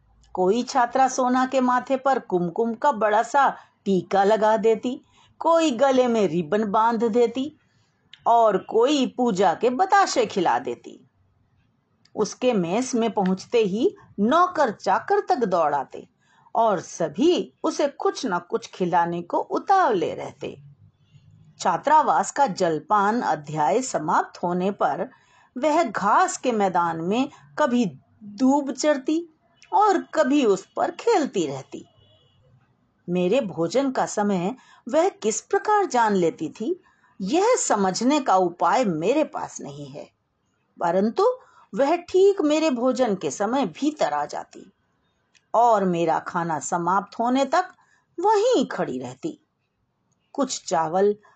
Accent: native